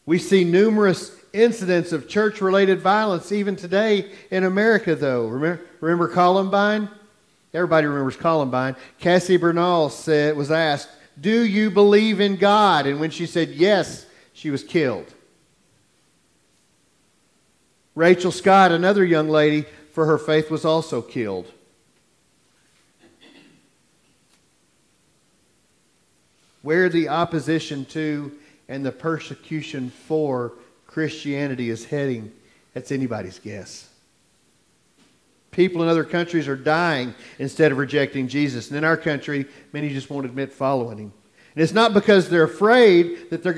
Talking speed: 120 wpm